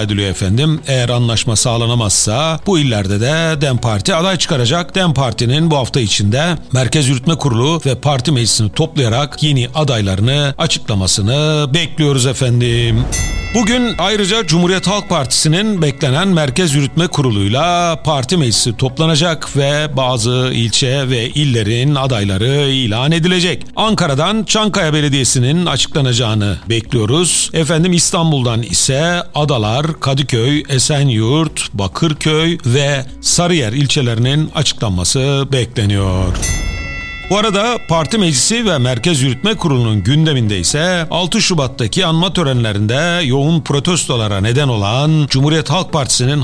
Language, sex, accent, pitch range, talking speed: Turkish, male, native, 120-165 Hz, 110 wpm